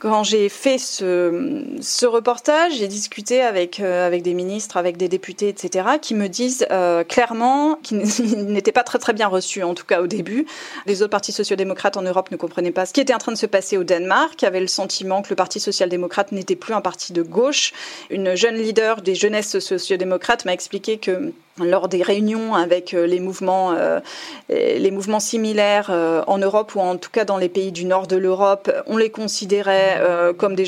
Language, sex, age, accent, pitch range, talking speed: French, female, 30-49, French, 185-230 Hz, 200 wpm